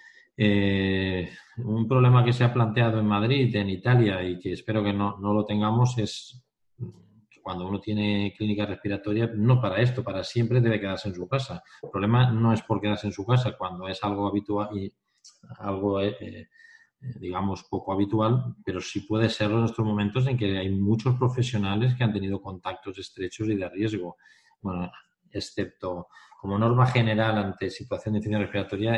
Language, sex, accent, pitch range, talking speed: Spanish, male, Spanish, 95-110 Hz, 170 wpm